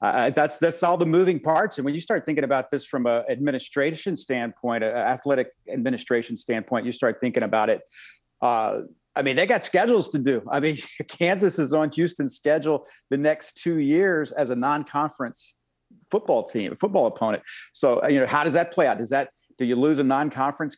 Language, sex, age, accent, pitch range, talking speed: English, male, 40-59, American, 130-160 Hz, 195 wpm